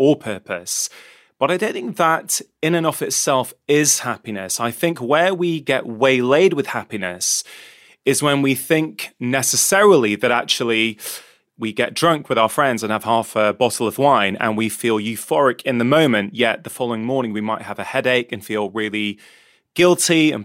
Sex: male